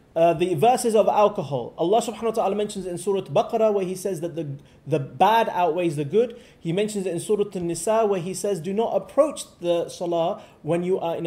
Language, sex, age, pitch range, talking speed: English, male, 30-49, 165-205 Hz, 225 wpm